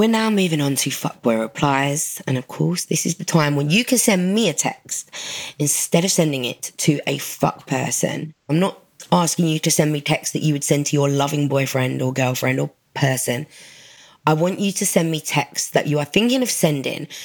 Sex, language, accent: female, English, British